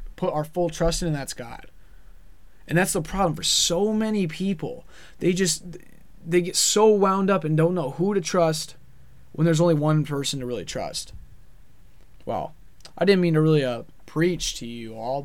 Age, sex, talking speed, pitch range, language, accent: 20-39, male, 190 wpm, 140-170 Hz, English, American